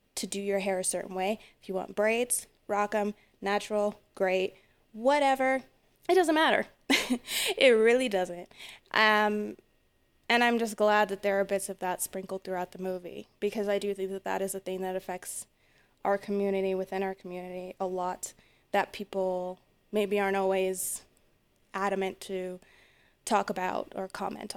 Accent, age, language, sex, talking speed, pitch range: American, 20-39, English, female, 160 wpm, 190-235 Hz